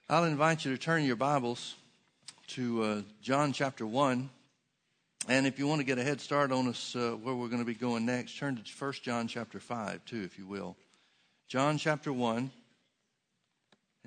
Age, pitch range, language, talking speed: 60-79, 115-135 Hz, English, 190 wpm